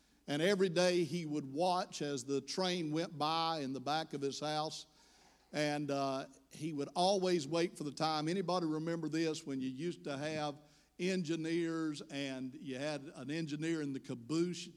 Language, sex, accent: English, male, American